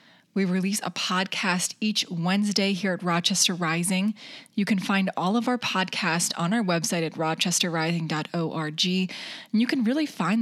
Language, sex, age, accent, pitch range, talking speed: English, female, 20-39, American, 170-205 Hz, 155 wpm